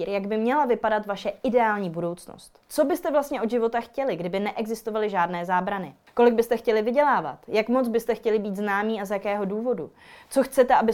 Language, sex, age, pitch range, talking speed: Czech, female, 20-39, 195-250 Hz, 185 wpm